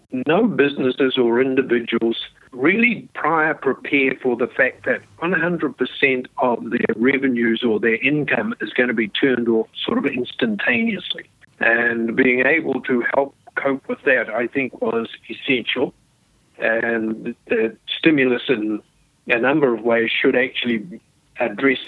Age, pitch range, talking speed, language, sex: 50-69, 115-135 Hz, 135 wpm, English, male